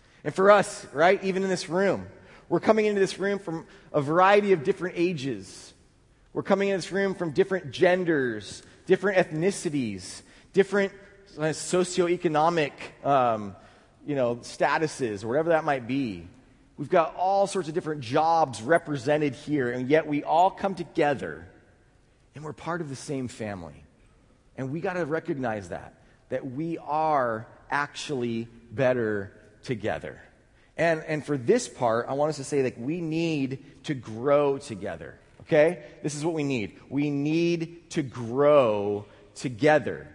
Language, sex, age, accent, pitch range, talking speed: English, male, 30-49, American, 130-175 Hz, 150 wpm